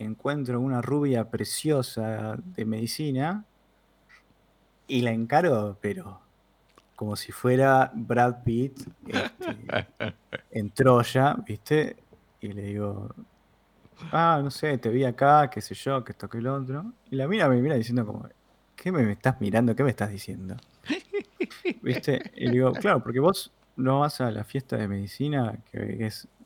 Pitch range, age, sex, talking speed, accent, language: 115-160 Hz, 20-39, male, 145 wpm, Argentinian, Spanish